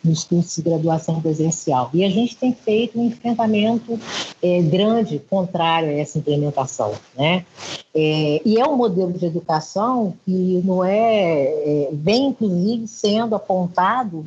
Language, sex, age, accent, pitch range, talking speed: Portuguese, female, 50-69, Brazilian, 160-215 Hz, 145 wpm